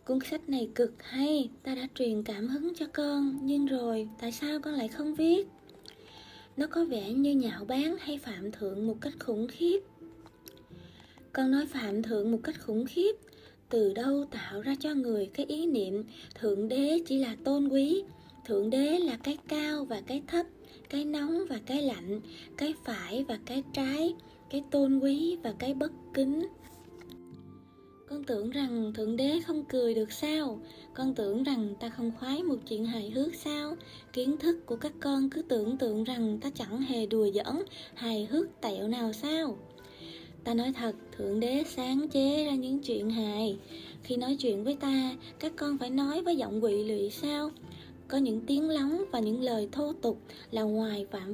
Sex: female